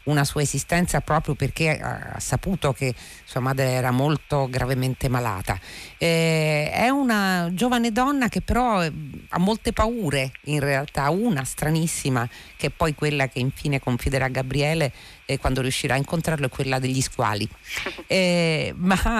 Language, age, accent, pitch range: Italian, 40-59, native, 130-170 Hz